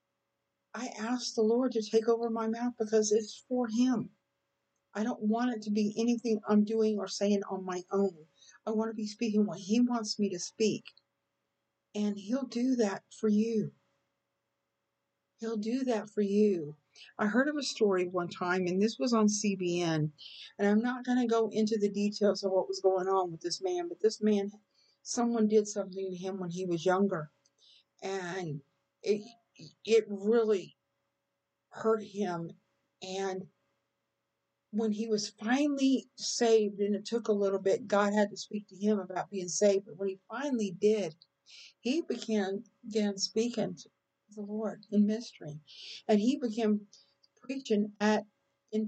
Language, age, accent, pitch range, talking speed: English, 50-69, American, 195-225 Hz, 170 wpm